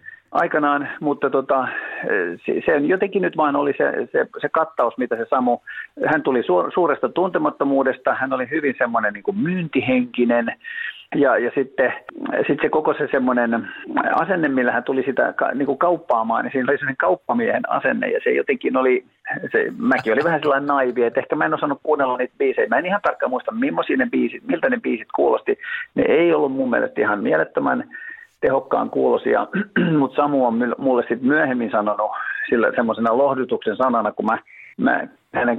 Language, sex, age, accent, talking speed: Finnish, male, 50-69, native, 170 wpm